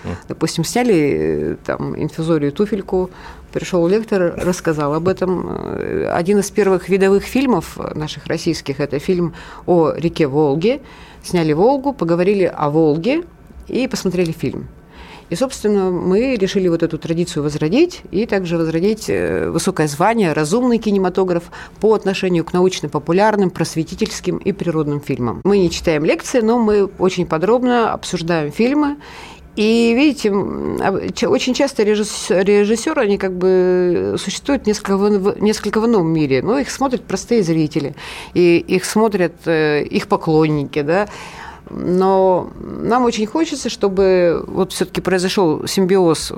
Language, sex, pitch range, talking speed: Russian, female, 165-210 Hz, 125 wpm